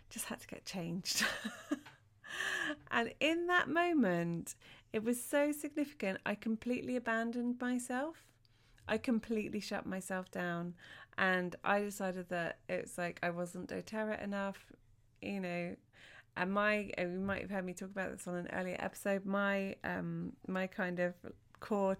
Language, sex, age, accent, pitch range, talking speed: English, female, 30-49, British, 175-205 Hz, 150 wpm